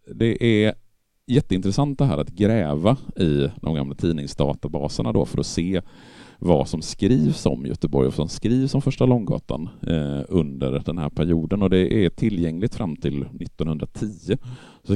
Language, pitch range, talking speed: Swedish, 70-105 Hz, 155 wpm